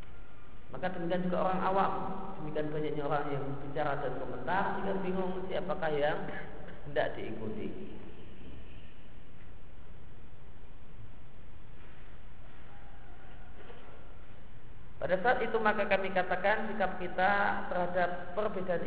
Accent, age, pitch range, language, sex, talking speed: native, 40-59, 140-185 Hz, Indonesian, male, 90 wpm